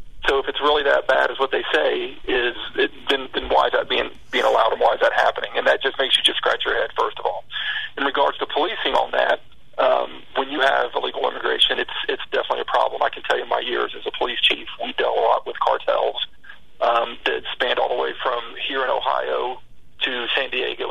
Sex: male